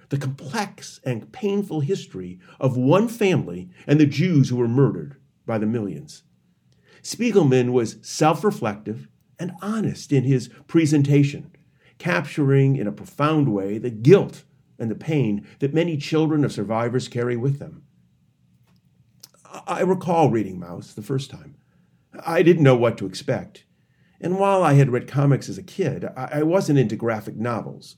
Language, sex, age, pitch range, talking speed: English, male, 50-69, 115-155 Hz, 150 wpm